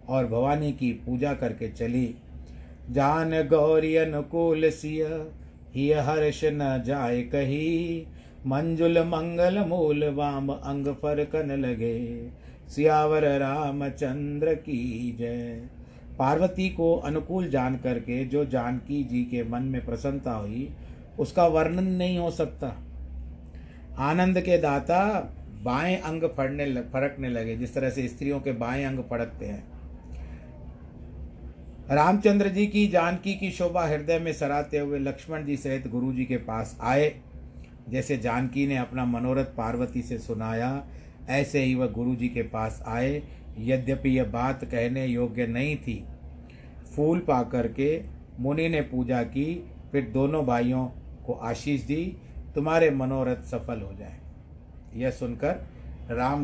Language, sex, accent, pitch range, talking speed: Hindi, male, native, 120-150 Hz, 130 wpm